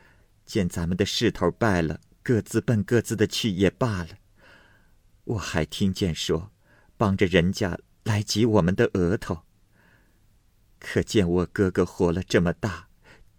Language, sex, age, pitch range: Chinese, male, 50-69, 90-110 Hz